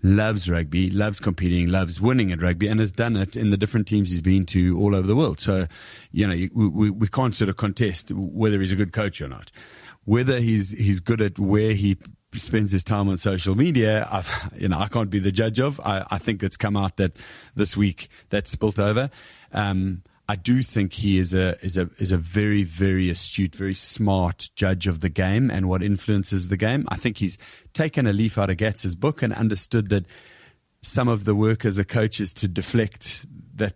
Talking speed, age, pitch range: 220 wpm, 30-49, 95-110 Hz